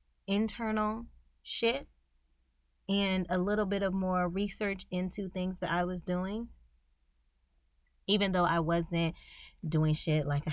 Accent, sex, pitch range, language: American, female, 155-185 Hz, English